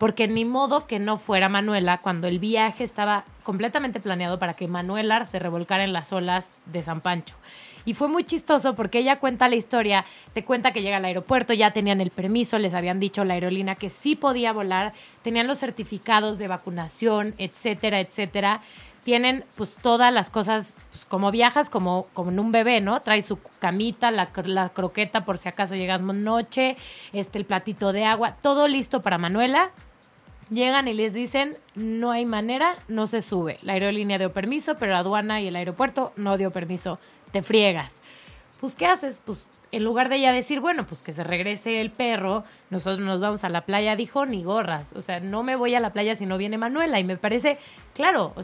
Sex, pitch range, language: female, 190-235 Hz, Spanish